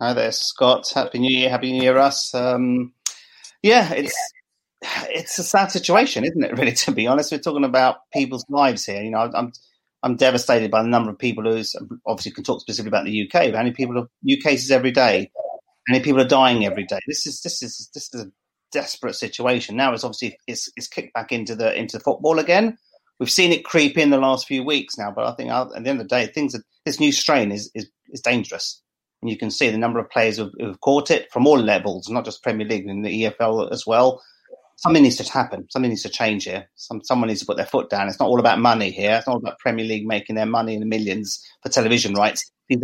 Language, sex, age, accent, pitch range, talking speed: English, male, 40-59, British, 110-130 Hz, 245 wpm